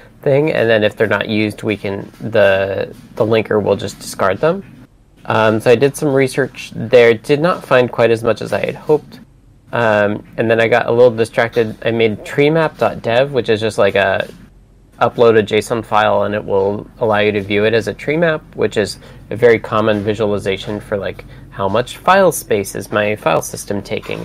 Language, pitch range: English, 105-125 Hz